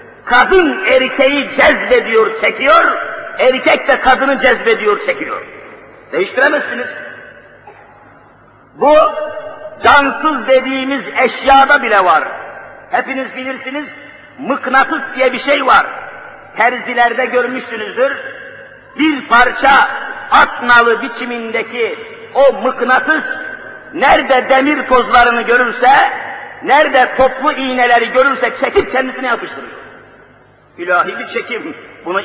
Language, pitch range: Turkish, 260-315 Hz